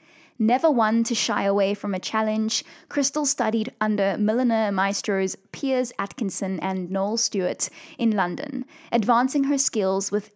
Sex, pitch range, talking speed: female, 200-260 Hz, 140 wpm